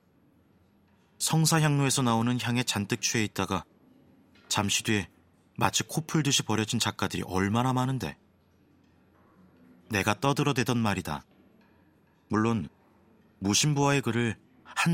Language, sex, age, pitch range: Korean, male, 30-49, 90-120 Hz